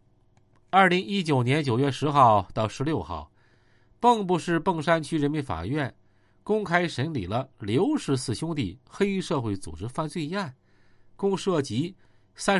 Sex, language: male, Chinese